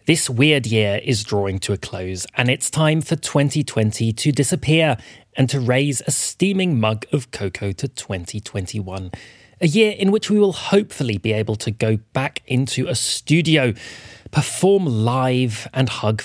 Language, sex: English, male